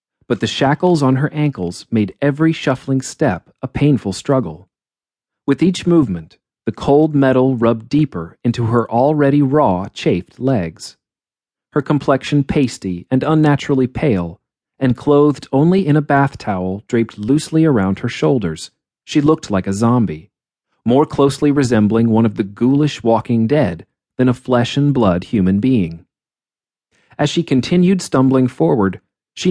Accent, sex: American, male